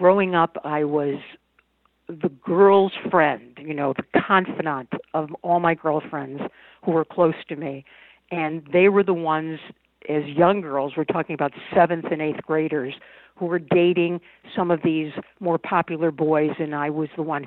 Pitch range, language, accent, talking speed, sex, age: 155-180 Hz, English, American, 170 wpm, female, 50-69